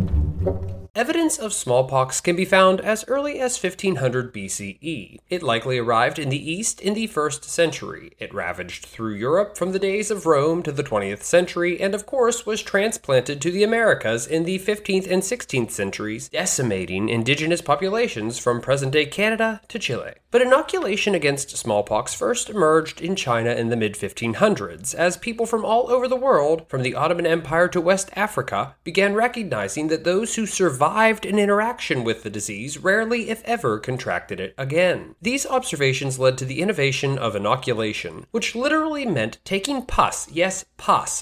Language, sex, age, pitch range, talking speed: English, male, 20-39, 130-215 Hz, 165 wpm